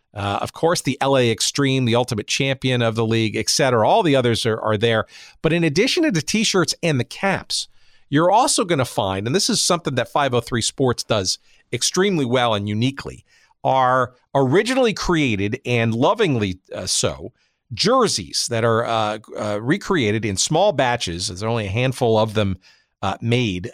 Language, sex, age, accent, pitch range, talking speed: English, male, 50-69, American, 115-150 Hz, 175 wpm